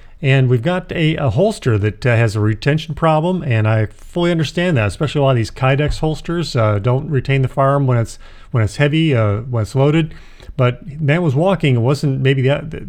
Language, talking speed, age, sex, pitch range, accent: English, 220 wpm, 40-59, male, 125-150 Hz, American